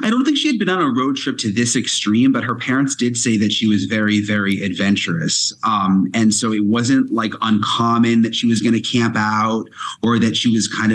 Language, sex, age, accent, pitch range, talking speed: English, male, 30-49, American, 105-120 Hz, 235 wpm